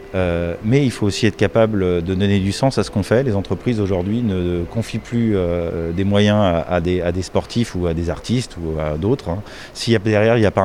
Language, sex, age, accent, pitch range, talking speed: French, male, 30-49, French, 90-115 Hz, 255 wpm